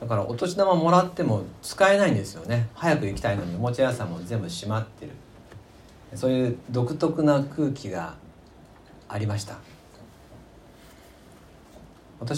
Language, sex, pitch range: Japanese, male, 100-145 Hz